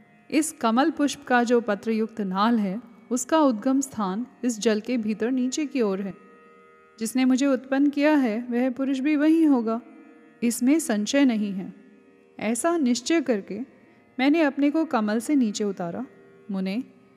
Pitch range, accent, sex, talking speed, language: 205-265 Hz, native, female, 155 wpm, Hindi